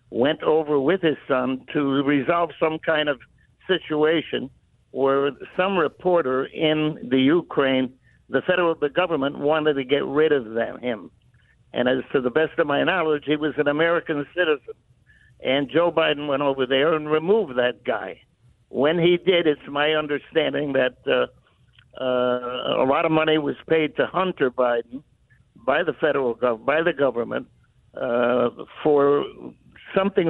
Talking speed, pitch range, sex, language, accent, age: 155 wpm, 135-170 Hz, male, English, American, 60-79